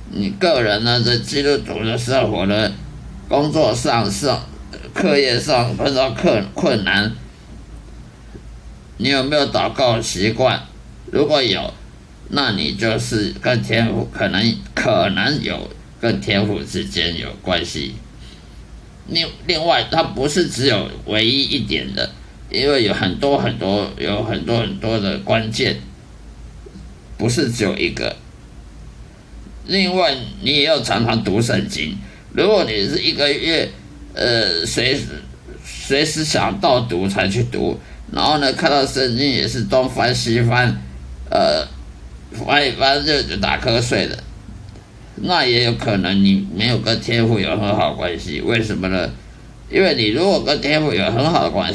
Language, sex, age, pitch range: Chinese, male, 50-69, 100-130 Hz